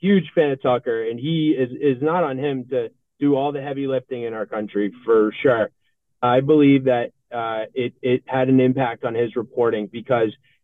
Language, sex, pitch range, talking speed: English, male, 140-190 Hz, 195 wpm